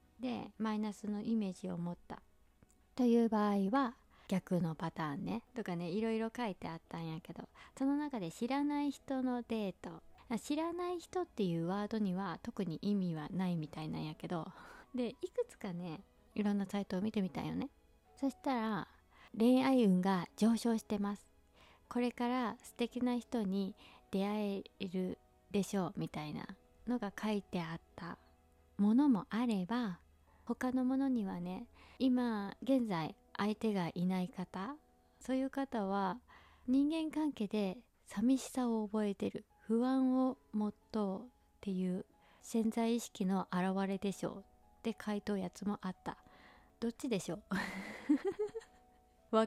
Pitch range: 185-245 Hz